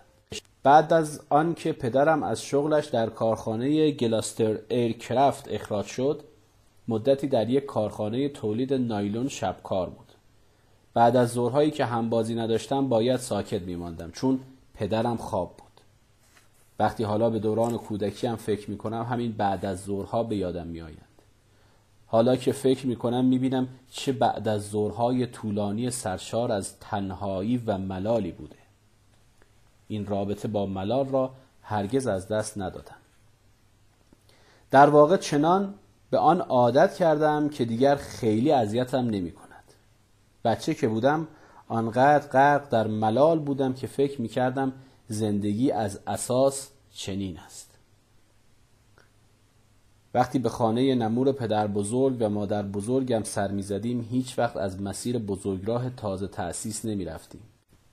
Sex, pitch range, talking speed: male, 105-130 Hz, 125 wpm